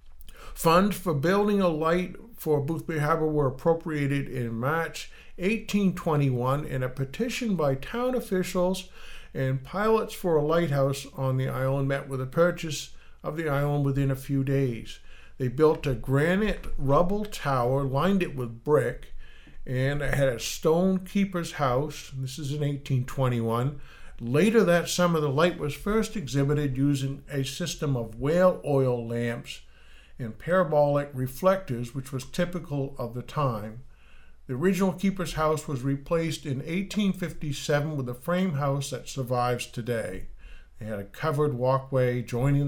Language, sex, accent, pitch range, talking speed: English, male, American, 130-170 Hz, 150 wpm